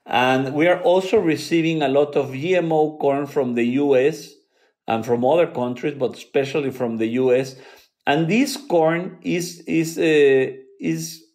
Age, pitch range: 50-69, 130-180 Hz